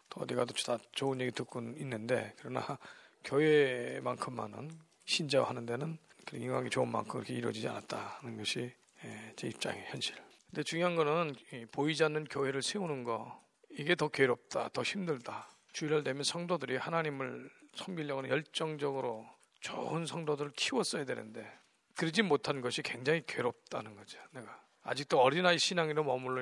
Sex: male